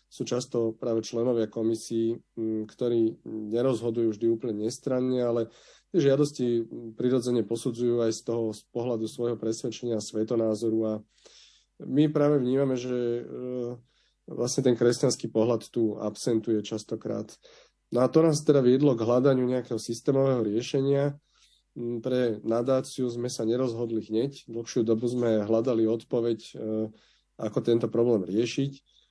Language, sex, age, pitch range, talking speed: Slovak, male, 30-49, 115-130 Hz, 130 wpm